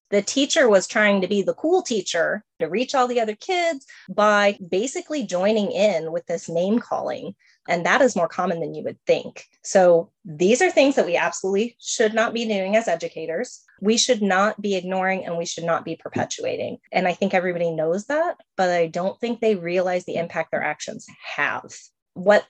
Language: English